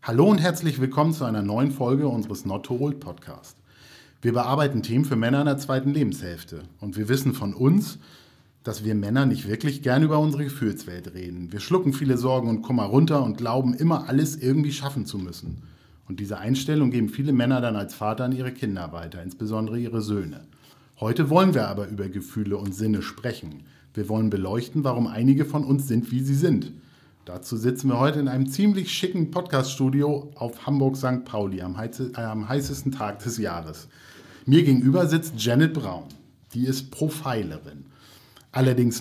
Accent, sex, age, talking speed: German, male, 50-69, 180 wpm